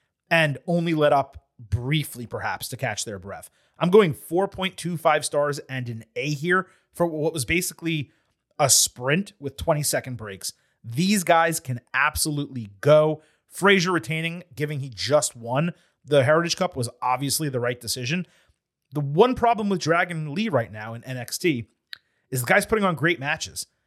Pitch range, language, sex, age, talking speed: 130-165 Hz, English, male, 30-49, 160 wpm